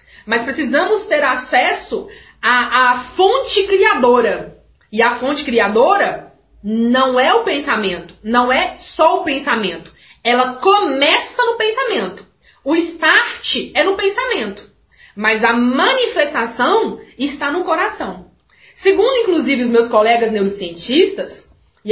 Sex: female